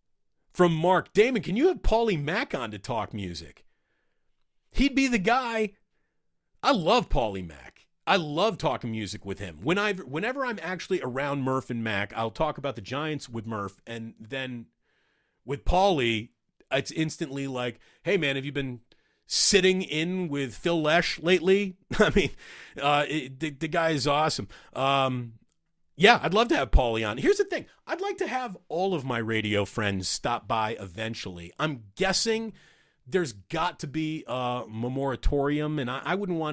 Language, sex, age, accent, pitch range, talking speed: English, male, 40-59, American, 115-165 Hz, 170 wpm